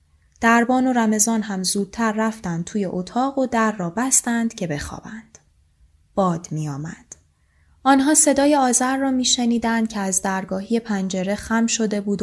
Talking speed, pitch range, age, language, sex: 140 wpm, 185-235 Hz, 10-29, Persian, female